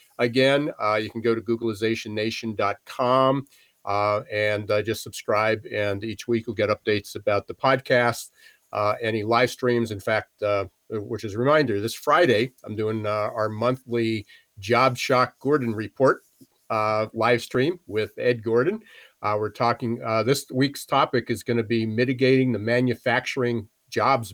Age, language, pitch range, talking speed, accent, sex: 50-69, English, 105-125 Hz, 160 wpm, American, male